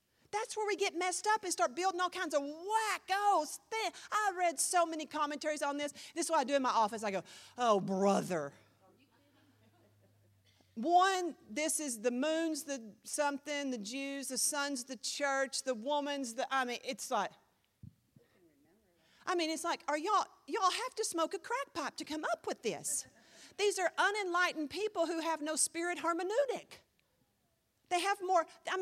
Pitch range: 255-365 Hz